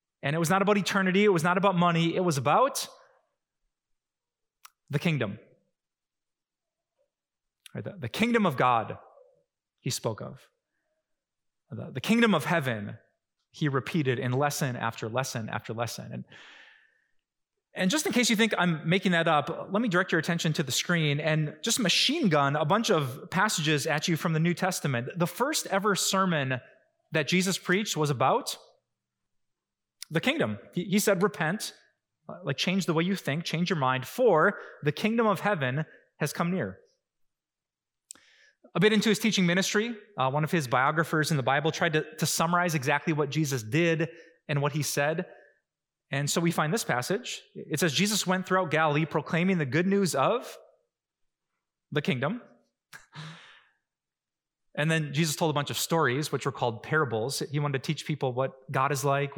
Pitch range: 145-190 Hz